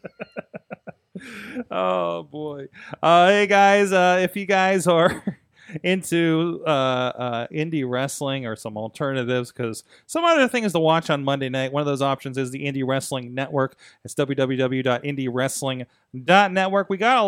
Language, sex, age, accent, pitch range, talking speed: English, male, 30-49, American, 130-165 Hz, 140 wpm